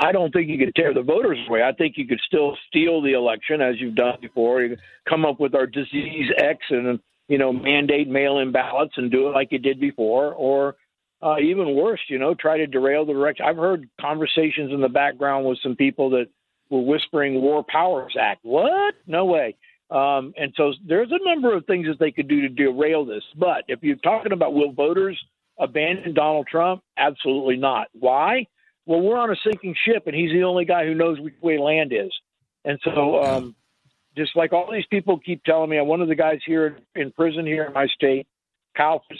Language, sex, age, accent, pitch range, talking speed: English, male, 50-69, American, 135-165 Hz, 215 wpm